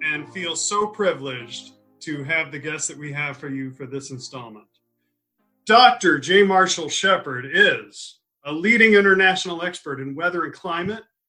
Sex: male